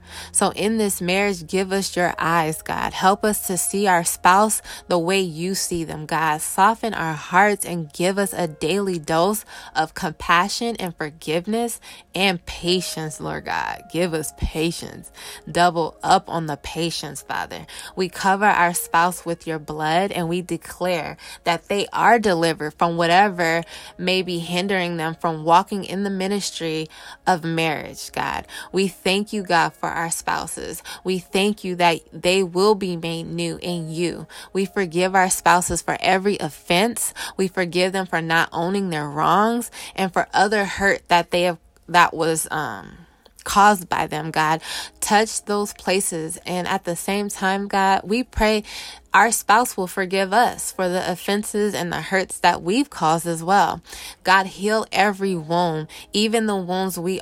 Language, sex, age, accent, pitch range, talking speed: English, female, 20-39, American, 165-195 Hz, 165 wpm